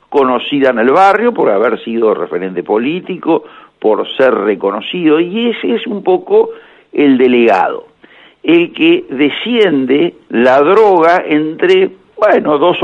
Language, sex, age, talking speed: Spanish, male, 60-79, 125 wpm